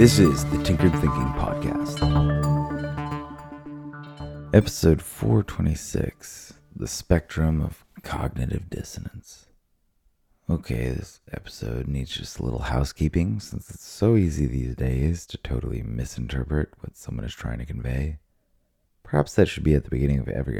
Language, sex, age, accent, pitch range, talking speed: English, male, 30-49, American, 65-95 Hz, 130 wpm